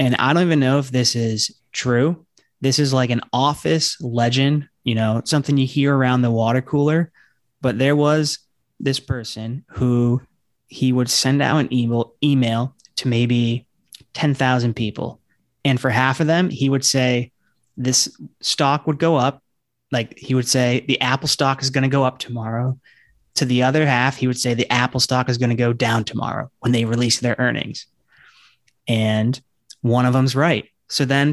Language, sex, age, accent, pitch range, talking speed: English, male, 30-49, American, 120-140 Hz, 180 wpm